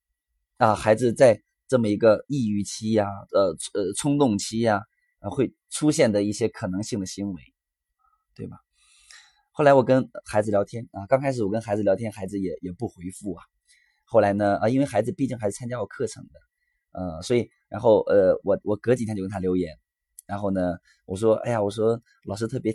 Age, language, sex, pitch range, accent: 20-39, Chinese, male, 95-115 Hz, native